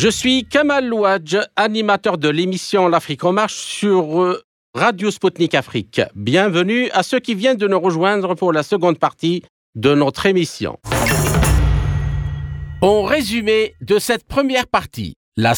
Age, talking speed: 50-69, 145 wpm